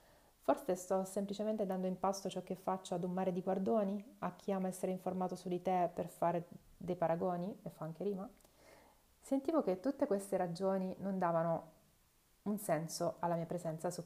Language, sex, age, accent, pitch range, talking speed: Italian, female, 30-49, native, 170-205 Hz, 185 wpm